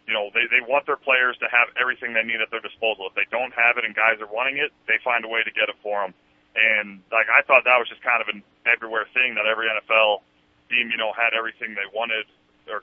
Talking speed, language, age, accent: 265 wpm, English, 40-59, American